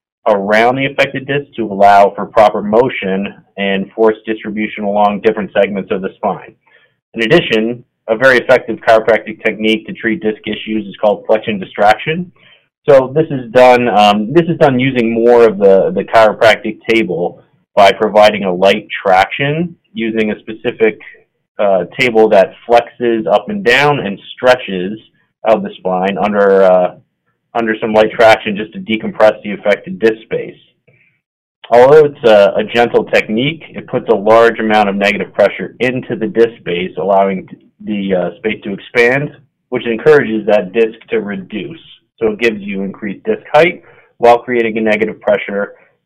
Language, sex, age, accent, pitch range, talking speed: English, male, 30-49, American, 105-125 Hz, 160 wpm